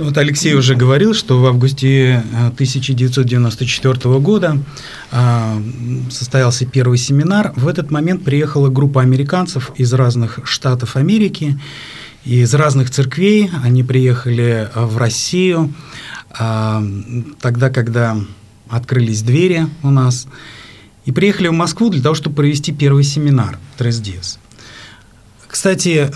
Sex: male